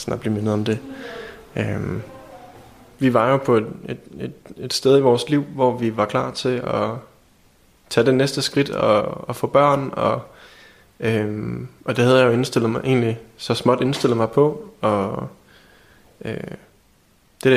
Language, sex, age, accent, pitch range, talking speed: Danish, male, 20-39, native, 110-130 Hz, 160 wpm